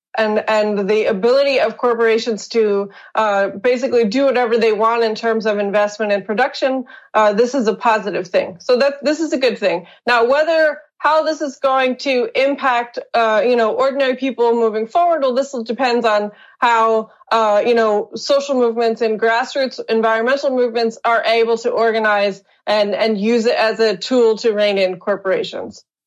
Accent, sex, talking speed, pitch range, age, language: American, female, 175 wpm, 210-260 Hz, 20-39, English